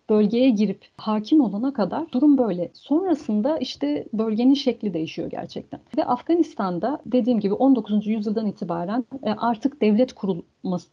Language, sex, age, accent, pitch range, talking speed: Turkish, female, 40-59, native, 200-260 Hz, 125 wpm